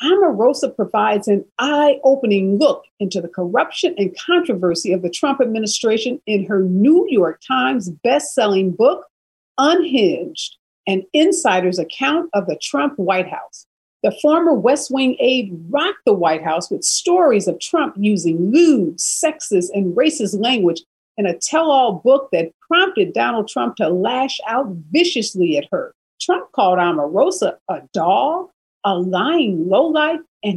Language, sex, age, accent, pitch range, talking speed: English, female, 50-69, American, 190-290 Hz, 140 wpm